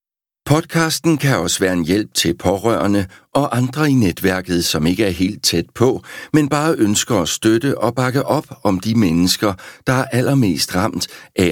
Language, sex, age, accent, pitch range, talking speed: Danish, male, 60-79, native, 85-130 Hz, 175 wpm